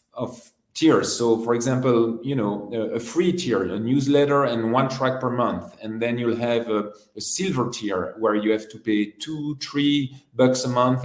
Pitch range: 115-140 Hz